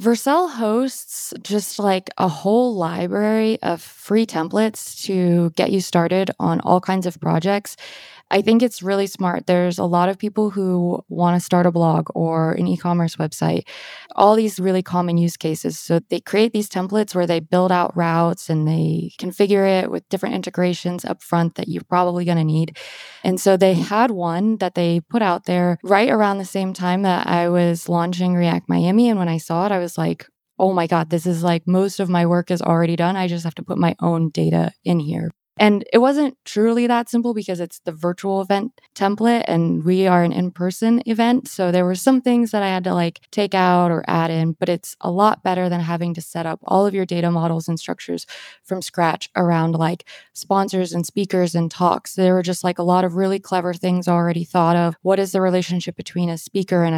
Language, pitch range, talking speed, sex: English, 170-200 Hz, 215 wpm, female